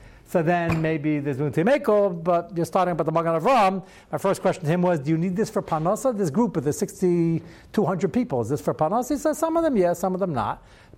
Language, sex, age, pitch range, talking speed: English, male, 60-79, 140-200 Hz, 255 wpm